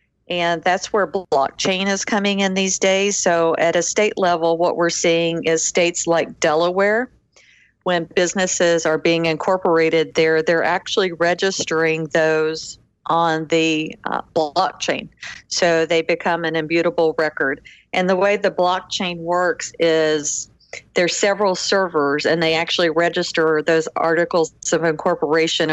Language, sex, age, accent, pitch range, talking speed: English, female, 50-69, American, 160-180 Hz, 140 wpm